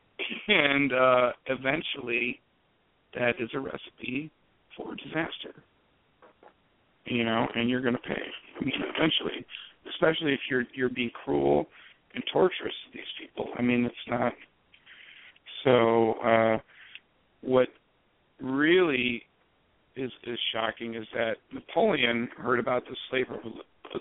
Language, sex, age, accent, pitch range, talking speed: English, male, 50-69, American, 115-130 Hz, 120 wpm